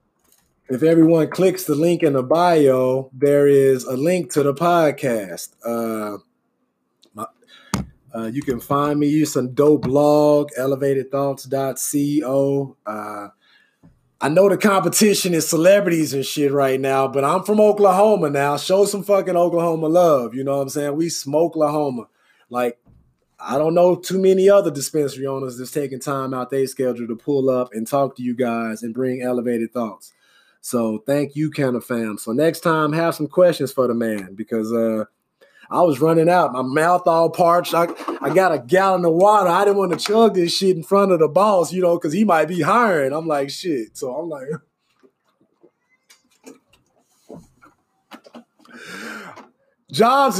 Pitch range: 135-180 Hz